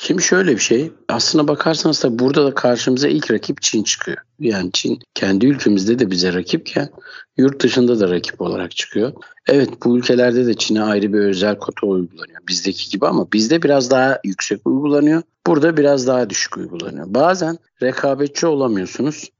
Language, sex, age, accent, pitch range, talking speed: Turkish, male, 60-79, native, 105-135 Hz, 165 wpm